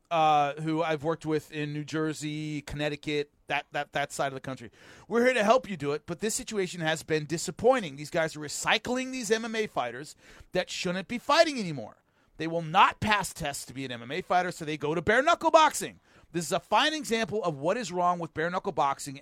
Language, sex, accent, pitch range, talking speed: English, male, American, 150-215 Hz, 215 wpm